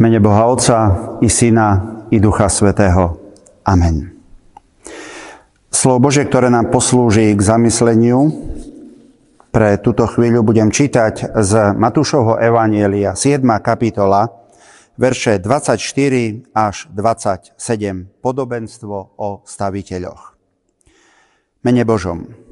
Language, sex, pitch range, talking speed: Slovak, male, 110-145 Hz, 95 wpm